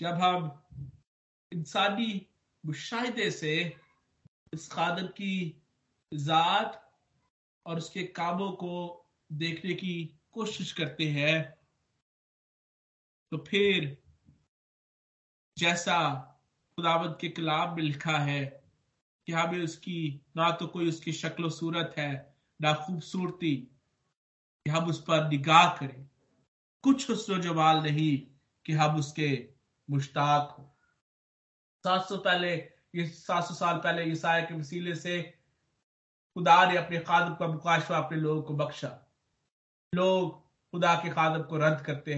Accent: native